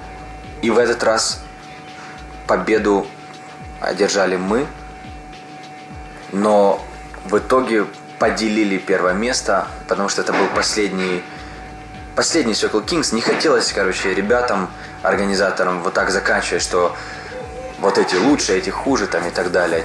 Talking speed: 120 wpm